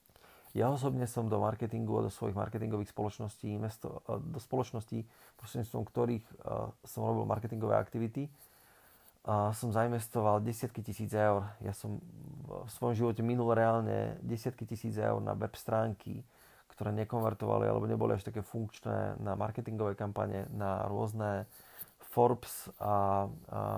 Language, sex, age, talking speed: Slovak, male, 30-49, 135 wpm